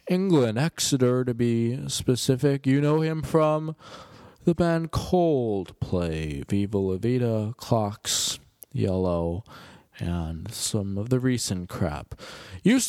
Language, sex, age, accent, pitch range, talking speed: English, male, 20-39, American, 115-165 Hz, 110 wpm